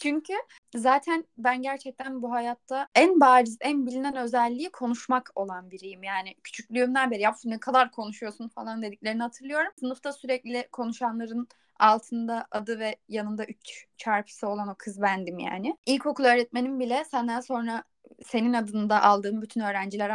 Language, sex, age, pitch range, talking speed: Turkish, female, 10-29, 220-275 Hz, 140 wpm